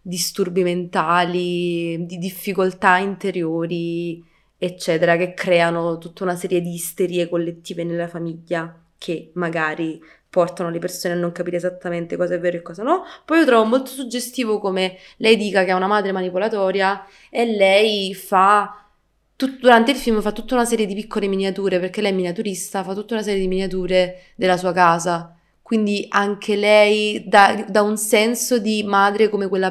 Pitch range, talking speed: 180-215 Hz, 165 wpm